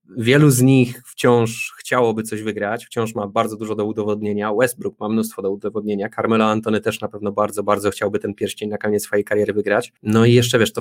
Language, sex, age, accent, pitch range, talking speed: Polish, male, 20-39, native, 105-125 Hz, 210 wpm